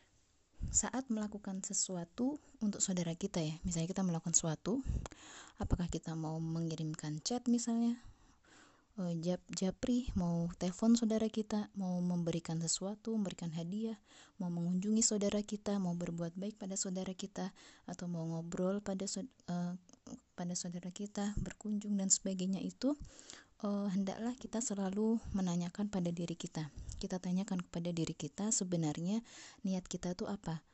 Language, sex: Indonesian, female